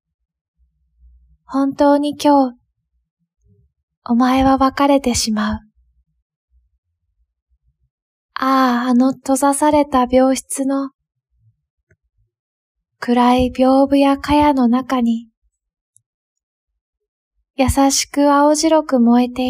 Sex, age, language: female, 20-39, Japanese